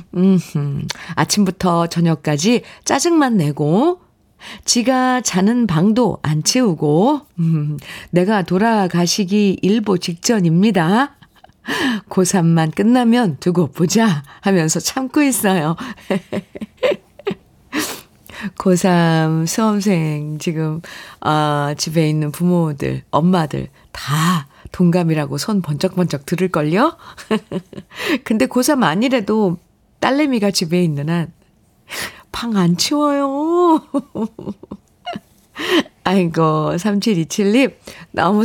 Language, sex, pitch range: Korean, female, 165-230 Hz